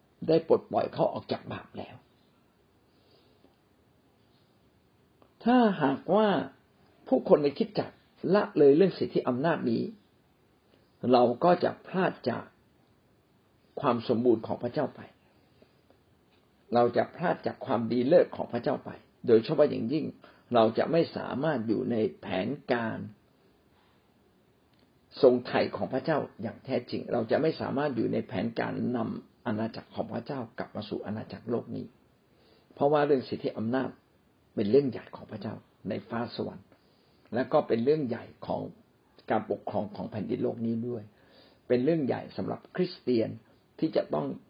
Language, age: Thai, 60-79